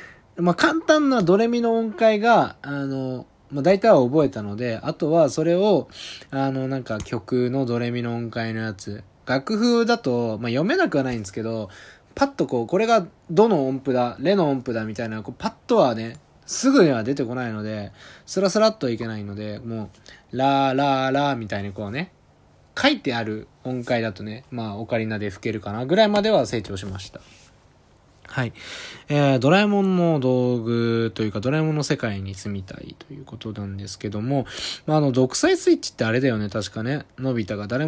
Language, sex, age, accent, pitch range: Japanese, male, 20-39, native, 105-165 Hz